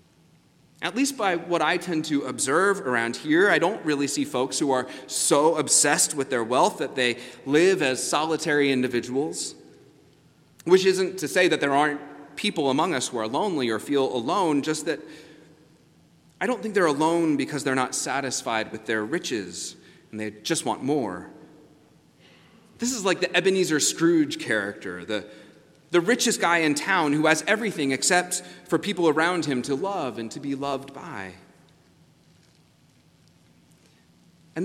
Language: English